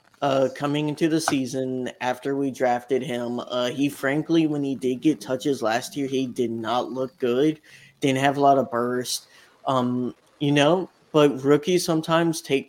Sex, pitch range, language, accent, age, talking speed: male, 130-150 Hz, English, American, 20-39, 175 wpm